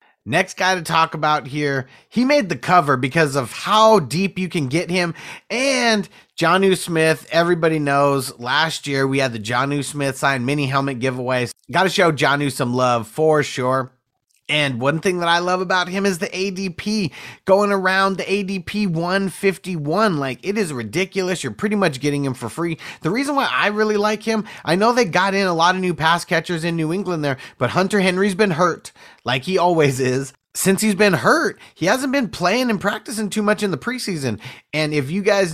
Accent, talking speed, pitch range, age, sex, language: American, 200 wpm, 140-190 Hz, 30-49, male, English